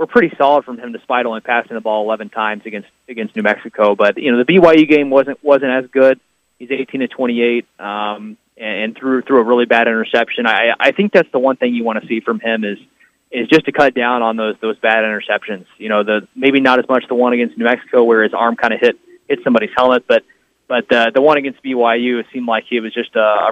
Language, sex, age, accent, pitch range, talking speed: English, male, 20-39, American, 115-135 Hz, 255 wpm